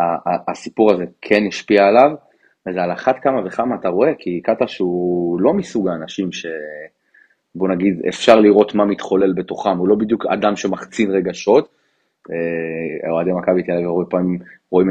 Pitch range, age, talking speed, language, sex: 80-100 Hz, 30-49, 150 wpm, Hebrew, male